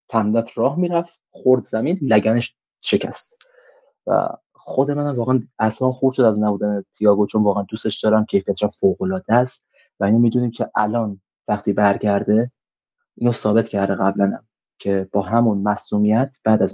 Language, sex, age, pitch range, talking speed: Persian, male, 20-39, 105-140 Hz, 155 wpm